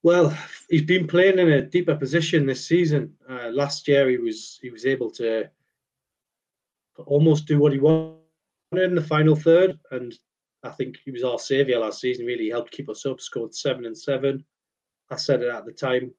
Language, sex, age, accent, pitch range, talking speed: English, male, 30-49, British, 120-150 Hz, 195 wpm